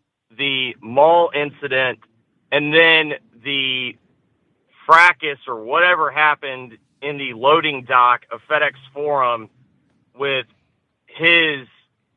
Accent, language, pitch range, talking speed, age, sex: American, English, 130-170 Hz, 95 wpm, 40-59, male